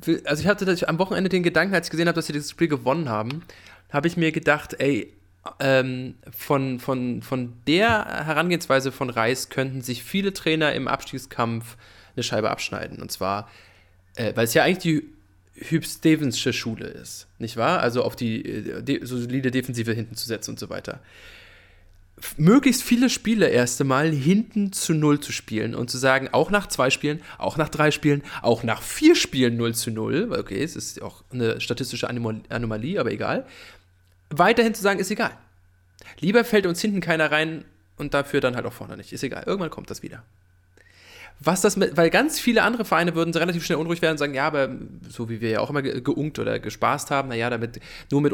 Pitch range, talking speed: 115-170 Hz, 195 wpm